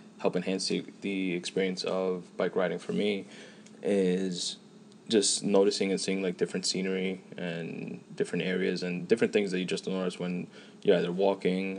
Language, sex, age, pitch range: English, male, 20-39, 90-100 Hz